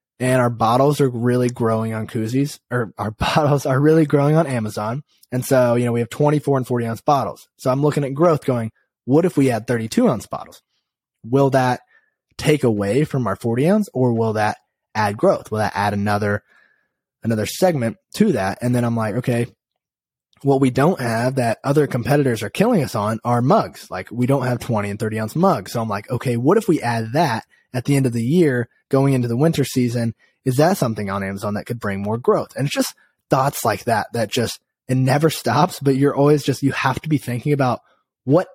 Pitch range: 110-140 Hz